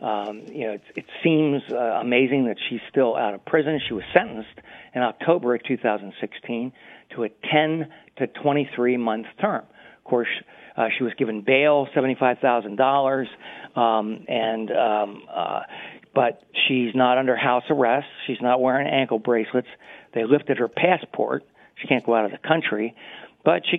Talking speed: 160 wpm